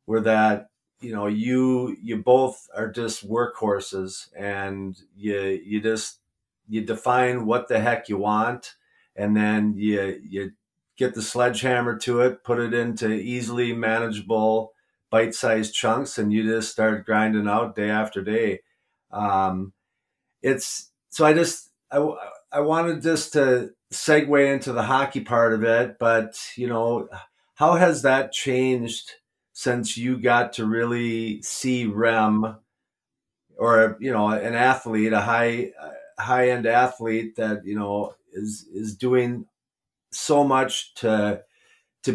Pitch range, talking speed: 110-125 Hz, 140 wpm